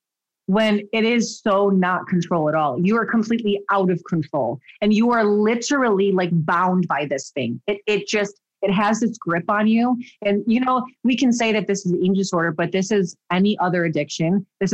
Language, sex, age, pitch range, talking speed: English, female, 30-49, 170-205 Hz, 210 wpm